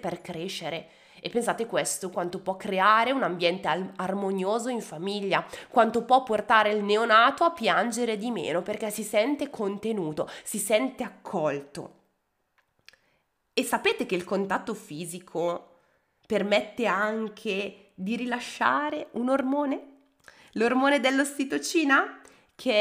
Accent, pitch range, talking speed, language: native, 190-260 Hz, 120 wpm, Italian